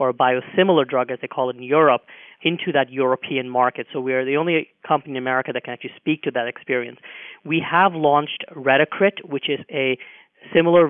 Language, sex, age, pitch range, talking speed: English, male, 30-49, 130-150 Hz, 205 wpm